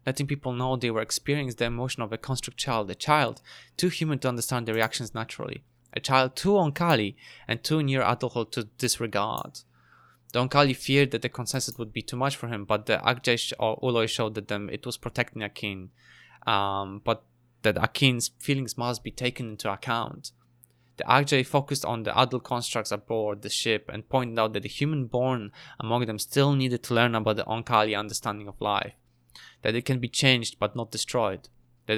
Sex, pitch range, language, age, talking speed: male, 110-130 Hz, English, 20-39, 190 wpm